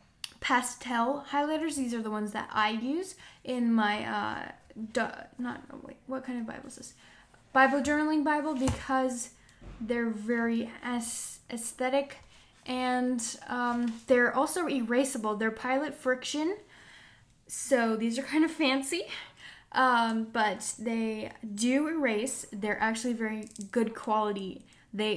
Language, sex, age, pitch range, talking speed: English, female, 10-29, 215-255 Hz, 120 wpm